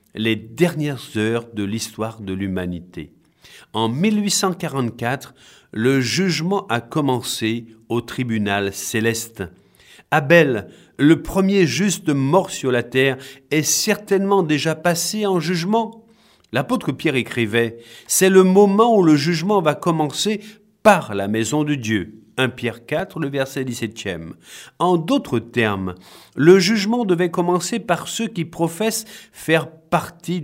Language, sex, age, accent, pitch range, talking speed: French, male, 50-69, French, 115-180 Hz, 130 wpm